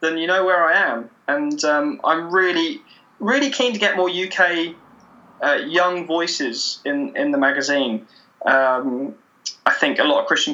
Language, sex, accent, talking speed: English, male, British, 170 wpm